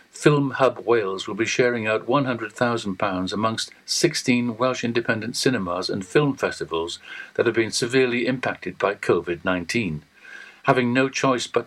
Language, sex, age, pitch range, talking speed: English, male, 60-79, 110-135 Hz, 140 wpm